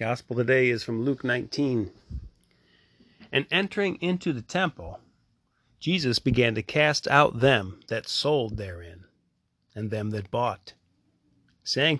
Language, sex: English, male